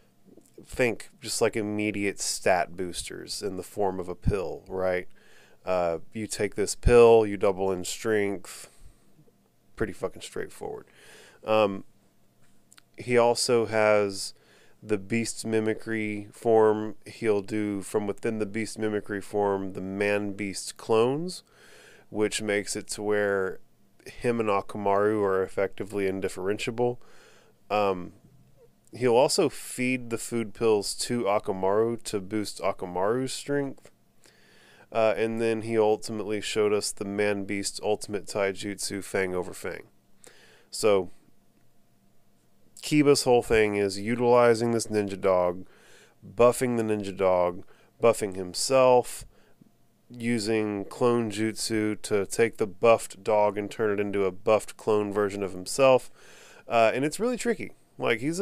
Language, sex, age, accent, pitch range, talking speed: English, male, 30-49, American, 100-115 Hz, 125 wpm